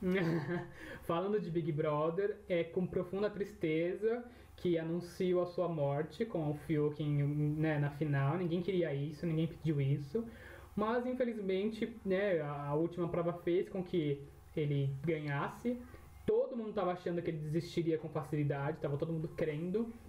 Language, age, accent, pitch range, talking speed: Portuguese, 20-39, Brazilian, 150-180 Hz, 145 wpm